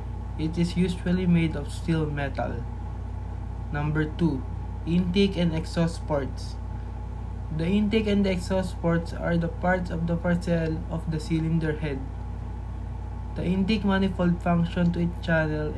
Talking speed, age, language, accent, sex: 135 wpm, 20-39, English, Filipino, male